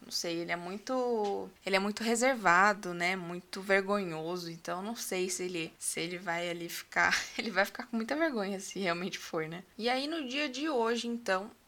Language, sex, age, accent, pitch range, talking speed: Portuguese, female, 20-39, Brazilian, 190-245 Hz, 200 wpm